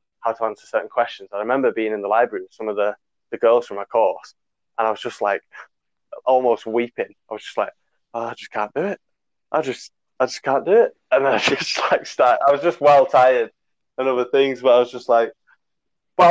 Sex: male